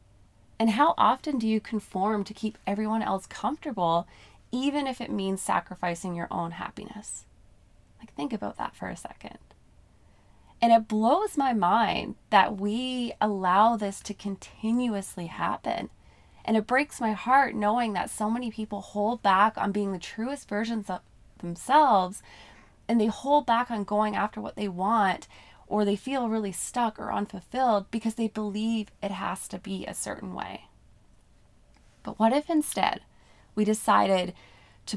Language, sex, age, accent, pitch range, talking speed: English, female, 20-39, American, 180-225 Hz, 155 wpm